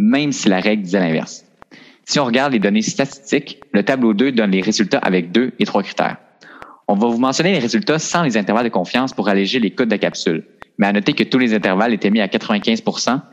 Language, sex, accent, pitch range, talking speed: French, male, Canadian, 100-160 Hz, 235 wpm